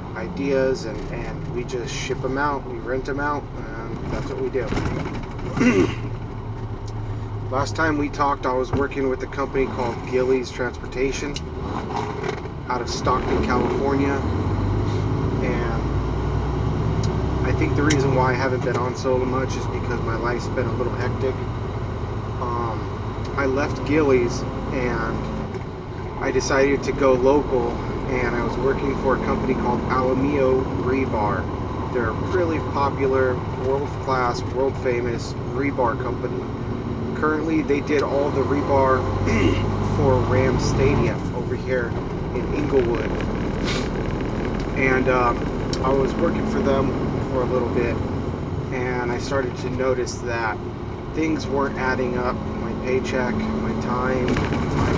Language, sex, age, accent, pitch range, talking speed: English, male, 30-49, American, 115-130 Hz, 130 wpm